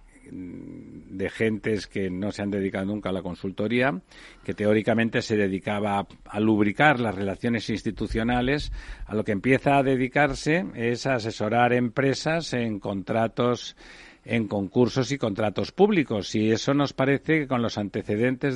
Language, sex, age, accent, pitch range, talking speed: Spanish, male, 50-69, Spanish, 105-125 Hz, 145 wpm